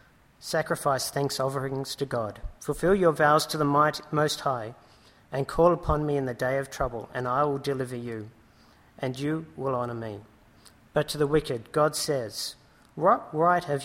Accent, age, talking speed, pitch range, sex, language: Australian, 50-69, 175 wpm, 125-150 Hz, male, English